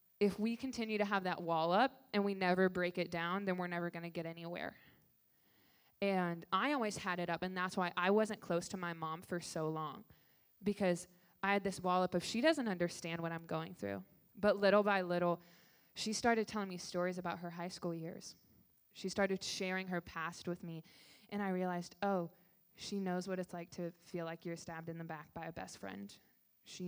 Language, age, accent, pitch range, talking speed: English, 20-39, American, 170-195 Hz, 215 wpm